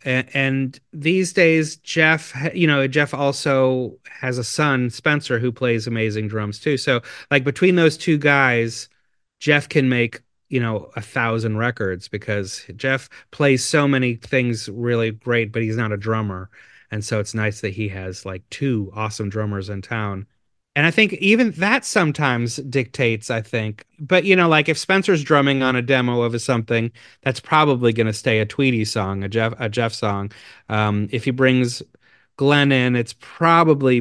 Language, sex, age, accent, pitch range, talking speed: English, male, 30-49, American, 115-155 Hz, 175 wpm